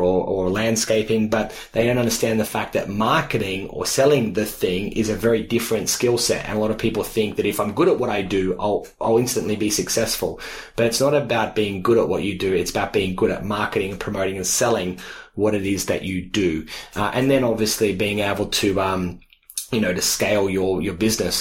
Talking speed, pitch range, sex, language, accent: 225 wpm, 100-115 Hz, male, English, Australian